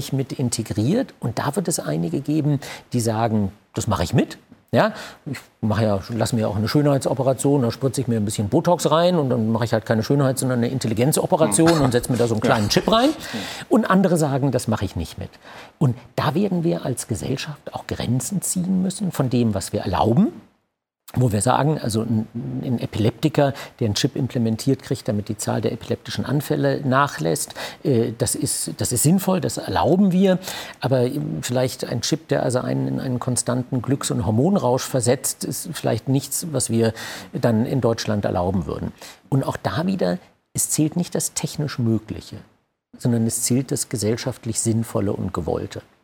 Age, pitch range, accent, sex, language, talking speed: 50-69, 115-145 Hz, German, male, German, 185 wpm